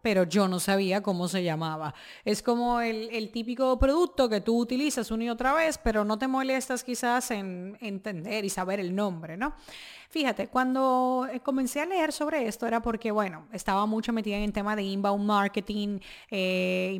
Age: 30-49